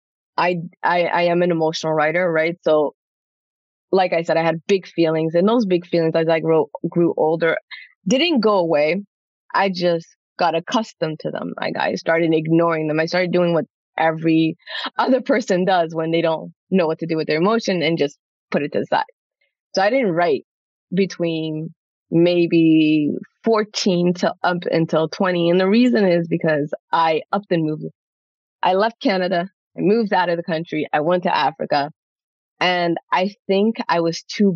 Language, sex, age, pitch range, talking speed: English, female, 20-39, 160-200 Hz, 175 wpm